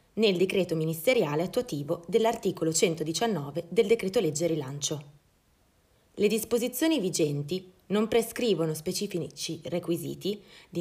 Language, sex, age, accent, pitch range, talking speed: Italian, female, 20-39, native, 160-220 Hz, 100 wpm